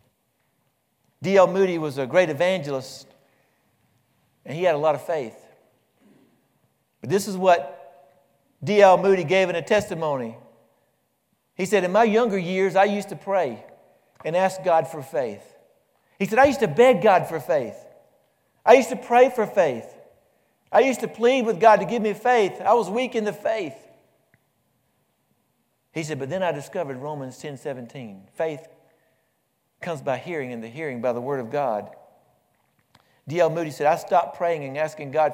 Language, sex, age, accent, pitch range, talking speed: English, male, 60-79, American, 140-195 Hz, 170 wpm